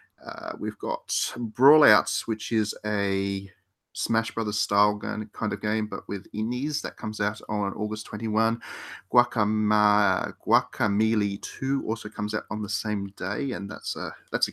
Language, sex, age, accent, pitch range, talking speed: English, male, 30-49, Australian, 100-120 Hz, 140 wpm